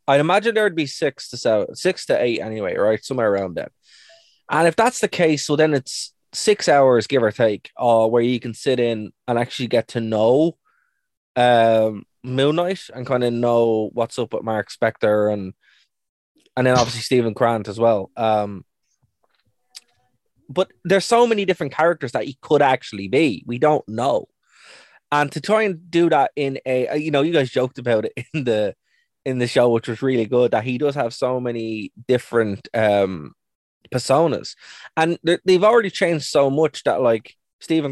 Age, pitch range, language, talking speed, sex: 20-39, 115-155 Hz, English, 185 wpm, male